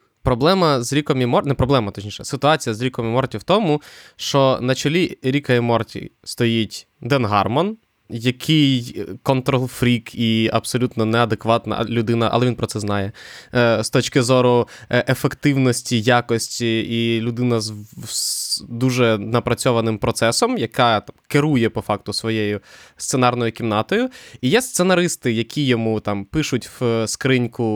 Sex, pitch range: male, 110-125 Hz